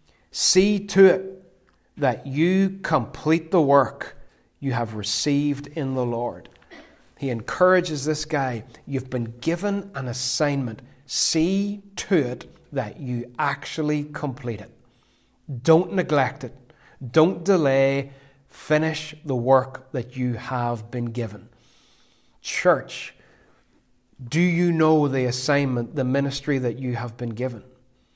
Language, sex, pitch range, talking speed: English, male, 125-155 Hz, 120 wpm